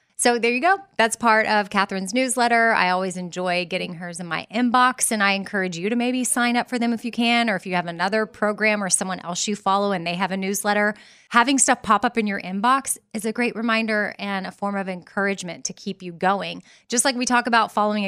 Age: 20-39